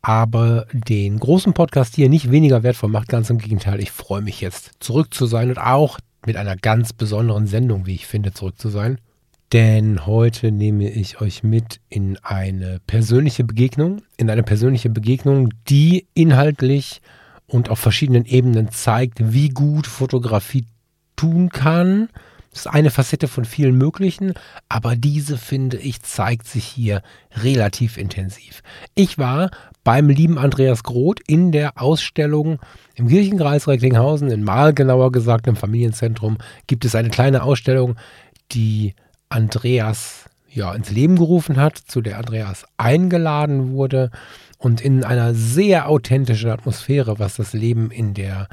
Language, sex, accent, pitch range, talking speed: German, male, German, 110-140 Hz, 145 wpm